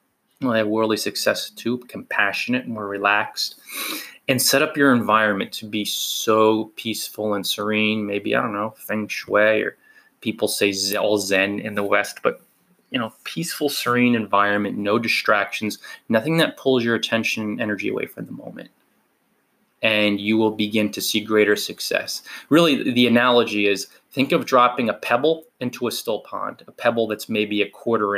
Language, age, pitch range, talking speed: English, 20-39, 105-115 Hz, 170 wpm